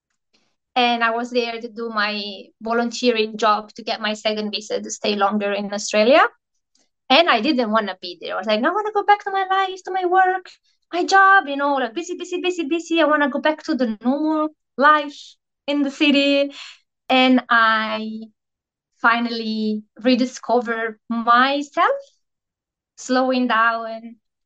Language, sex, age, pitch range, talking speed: English, female, 20-39, 220-280 Hz, 165 wpm